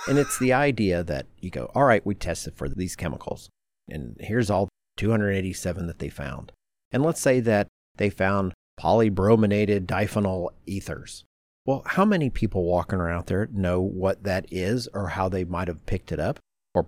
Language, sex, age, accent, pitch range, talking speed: English, male, 50-69, American, 90-110 Hz, 180 wpm